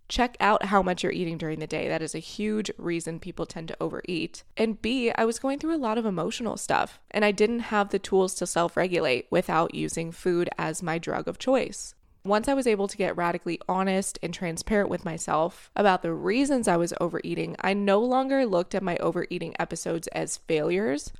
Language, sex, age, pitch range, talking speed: English, female, 20-39, 170-200 Hz, 205 wpm